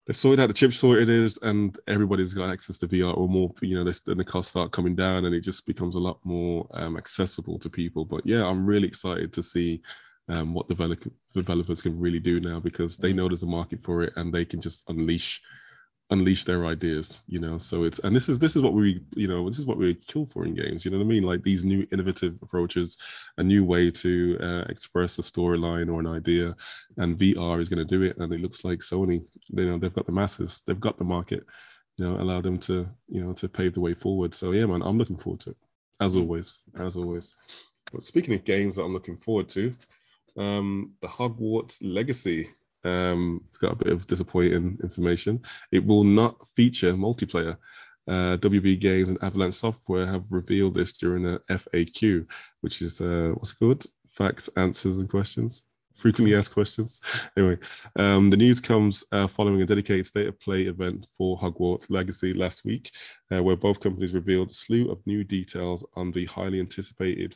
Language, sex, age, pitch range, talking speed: English, male, 20-39, 90-100 Hz, 210 wpm